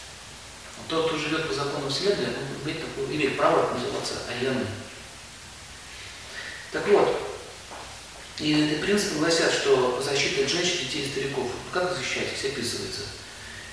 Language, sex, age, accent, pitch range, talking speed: Russian, male, 40-59, native, 105-140 Hz, 125 wpm